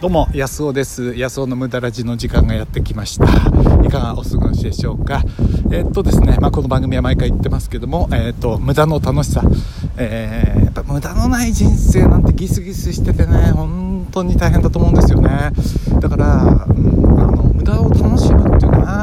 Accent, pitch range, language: native, 95-130 Hz, Japanese